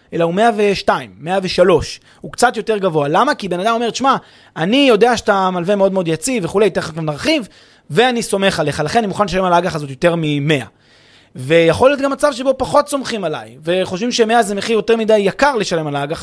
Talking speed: 200 wpm